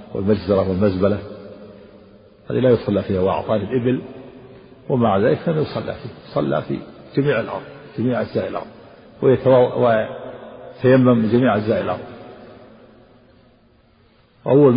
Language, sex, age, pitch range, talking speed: Arabic, male, 50-69, 105-125 Hz, 110 wpm